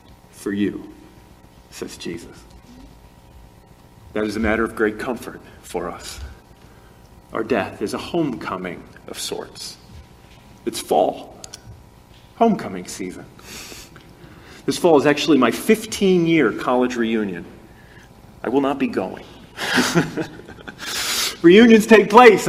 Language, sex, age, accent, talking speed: English, male, 40-59, American, 110 wpm